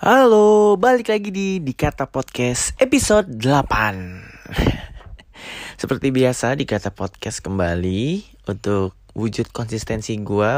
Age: 20-39